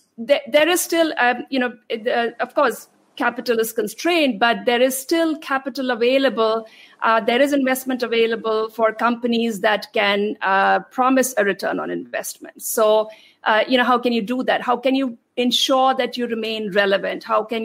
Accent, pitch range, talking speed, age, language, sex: Indian, 225-270 Hz, 180 wpm, 50-69, English, female